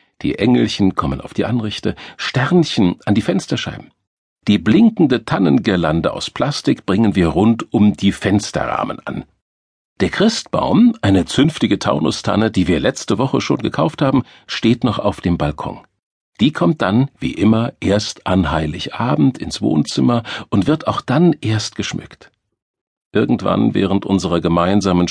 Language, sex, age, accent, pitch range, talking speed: German, male, 50-69, German, 95-120 Hz, 140 wpm